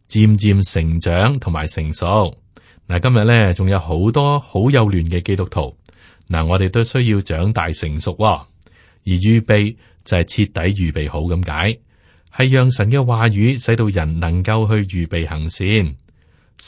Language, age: Chinese, 30-49